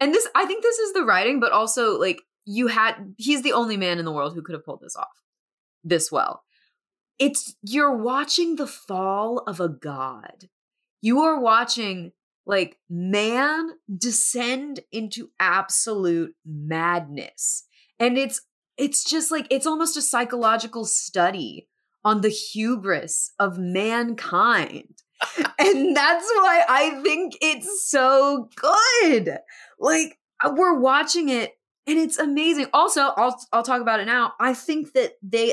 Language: English